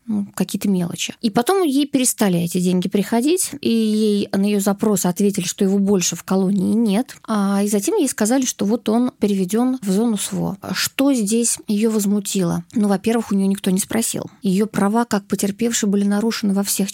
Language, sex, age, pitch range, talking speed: Russian, female, 20-39, 185-220 Hz, 185 wpm